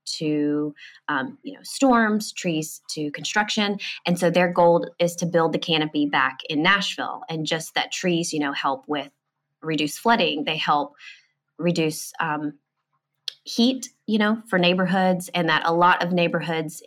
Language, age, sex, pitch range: English, 20-39, female, 155-185 Hz